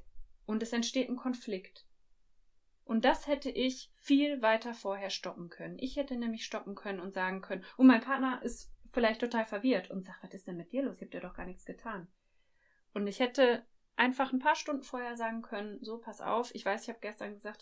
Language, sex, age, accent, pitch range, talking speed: German, female, 20-39, German, 195-250 Hz, 215 wpm